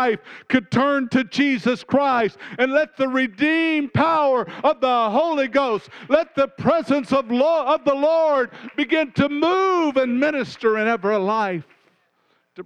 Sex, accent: male, American